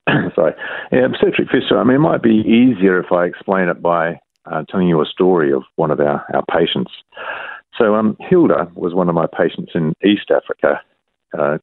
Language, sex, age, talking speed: English, male, 50-69, 195 wpm